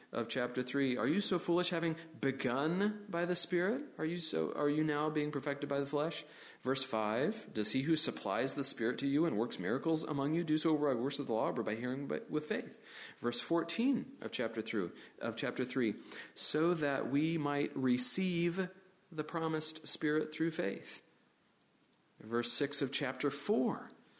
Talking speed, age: 185 wpm, 40-59